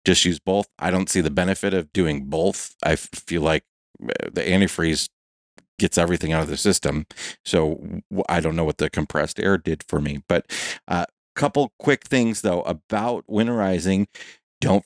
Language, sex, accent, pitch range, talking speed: English, male, American, 80-100 Hz, 175 wpm